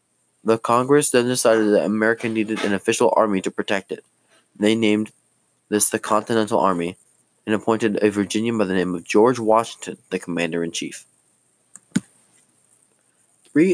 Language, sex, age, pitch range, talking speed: English, male, 20-39, 100-120 Hz, 150 wpm